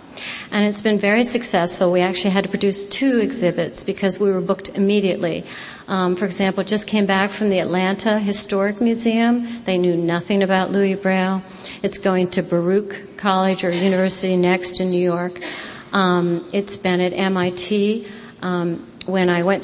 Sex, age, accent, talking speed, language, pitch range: female, 40-59, American, 165 wpm, English, 180-205 Hz